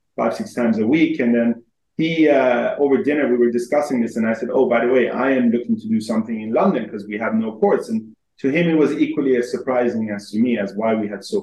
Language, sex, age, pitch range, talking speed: English, male, 30-49, 110-150 Hz, 270 wpm